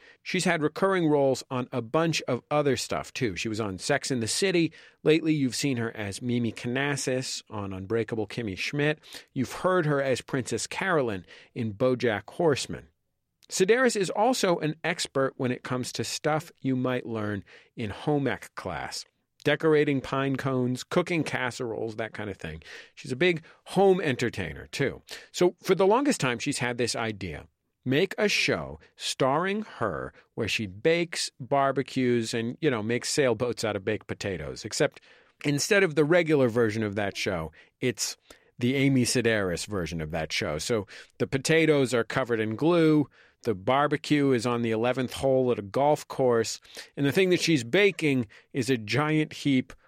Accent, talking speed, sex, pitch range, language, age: American, 170 wpm, male, 115-150 Hz, English, 40-59